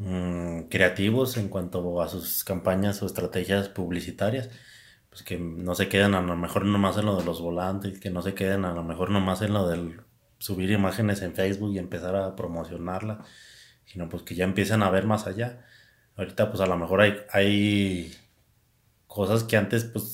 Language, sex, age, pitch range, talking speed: Spanish, male, 30-49, 95-110 Hz, 185 wpm